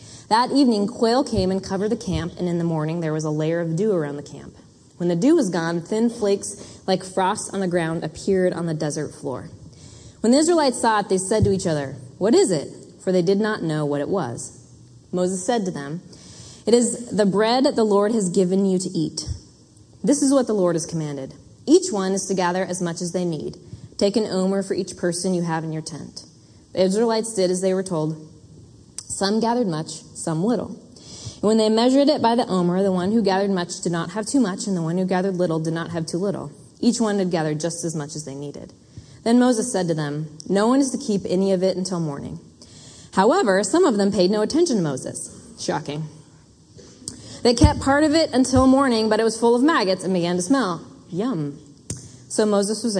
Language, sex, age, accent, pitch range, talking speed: English, female, 20-39, American, 165-220 Hz, 225 wpm